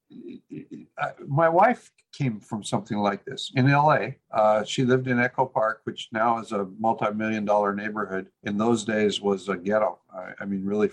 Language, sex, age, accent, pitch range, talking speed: English, male, 50-69, American, 110-140 Hz, 175 wpm